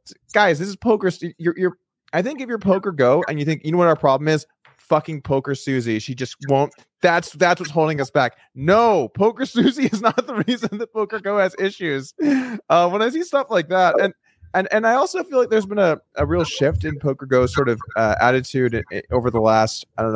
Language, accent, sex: English, American, male